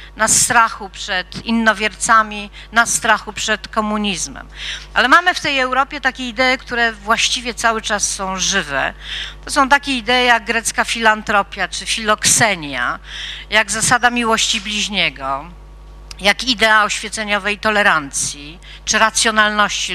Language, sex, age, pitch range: Polish, female, 50-69, 195-230 Hz